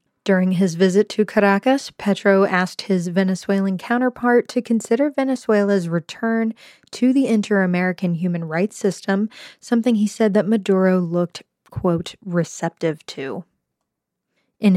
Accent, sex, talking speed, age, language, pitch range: American, female, 120 wpm, 20-39, English, 180-220 Hz